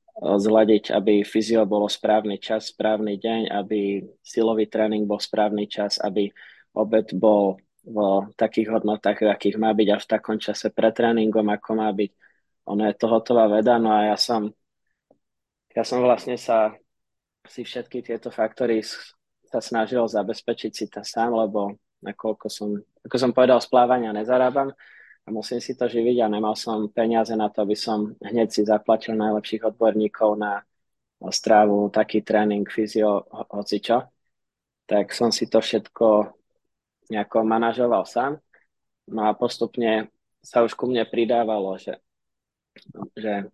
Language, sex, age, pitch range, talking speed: Slovak, male, 20-39, 105-115 Hz, 145 wpm